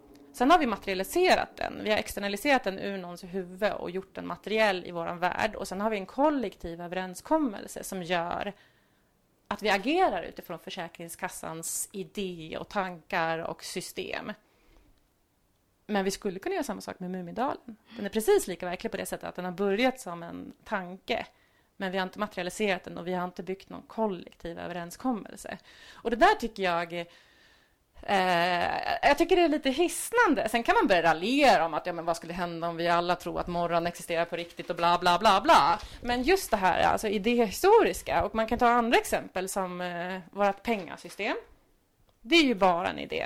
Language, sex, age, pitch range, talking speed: Swedish, female, 30-49, 175-235 Hz, 190 wpm